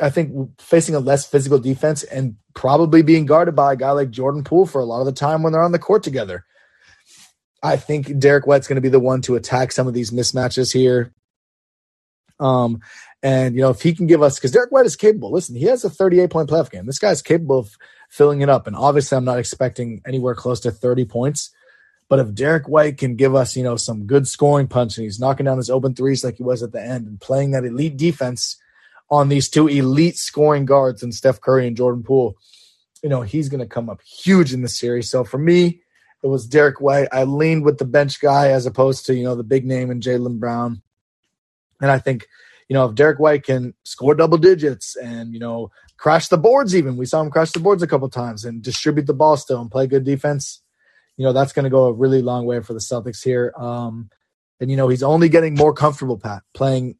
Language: English